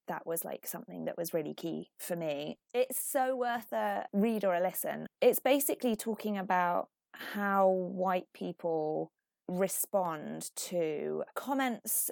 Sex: female